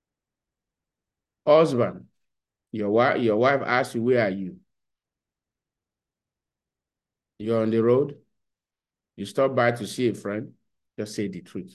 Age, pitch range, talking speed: 50-69, 105-130 Hz, 125 wpm